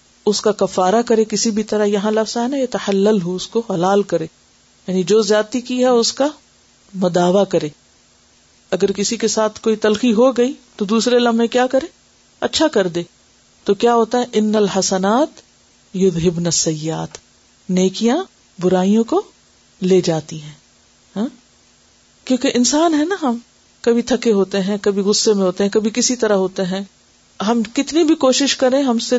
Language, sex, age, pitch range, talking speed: Urdu, female, 50-69, 195-255 Hz, 165 wpm